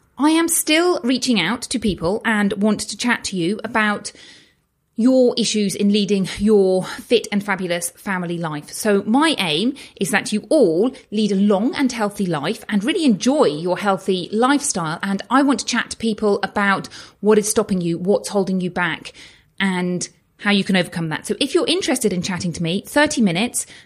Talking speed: 190 wpm